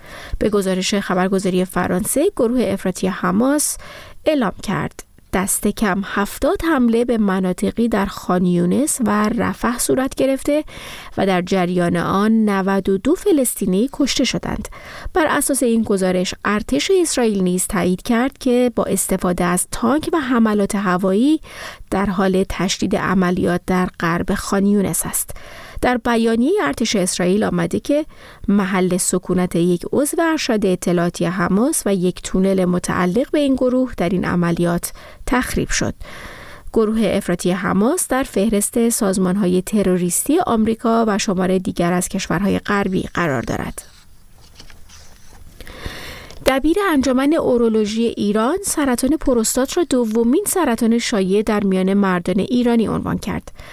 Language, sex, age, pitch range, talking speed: Persian, female, 30-49, 185-245 Hz, 125 wpm